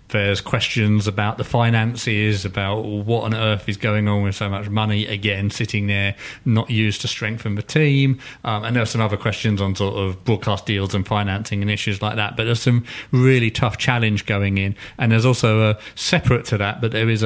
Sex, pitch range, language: male, 105-125 Hz, English